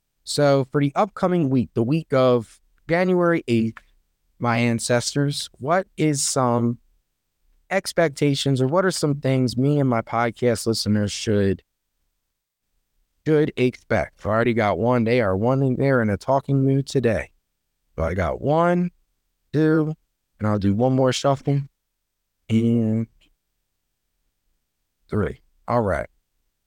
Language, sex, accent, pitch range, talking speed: English, male, American, 100-150 Hz, 130 wpm